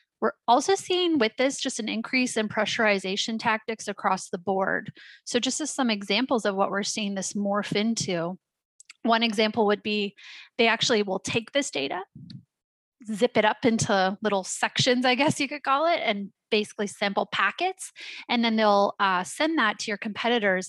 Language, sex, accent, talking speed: English, female, American, 175 wpm